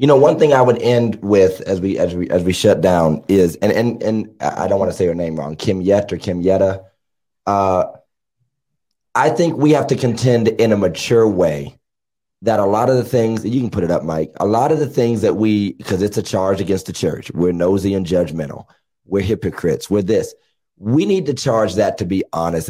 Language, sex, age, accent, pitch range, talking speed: English, male, 30-49, American, 95-120 Hz, 225 wpm